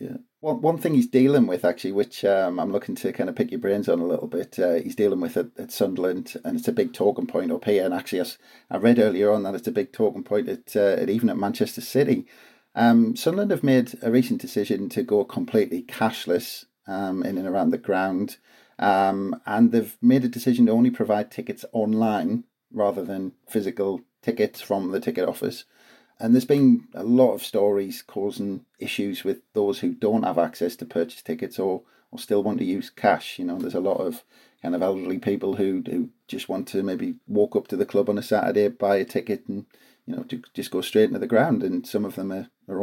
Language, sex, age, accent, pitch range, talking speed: English, male, 40-59, British, 100-135 Hz, 225 wpm